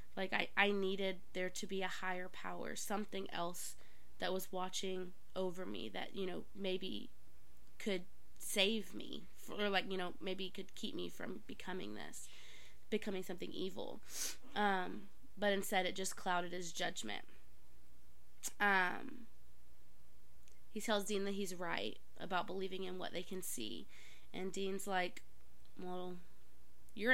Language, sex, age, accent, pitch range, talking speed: English, female, 20-39, American, 180-200 Hz, 145 wpm